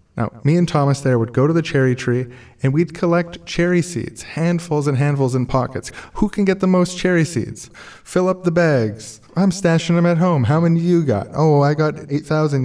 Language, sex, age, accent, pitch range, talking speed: English, male, 20-39, American, 115-170 Hz, 220 wpm